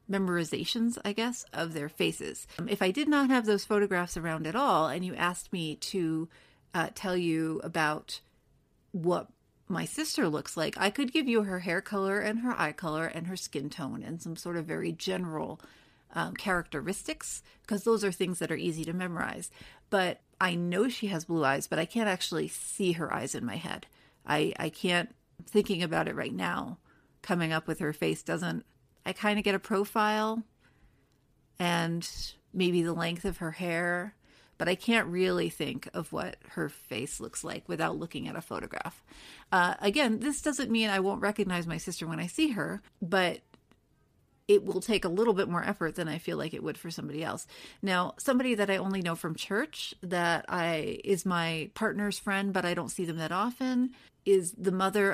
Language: English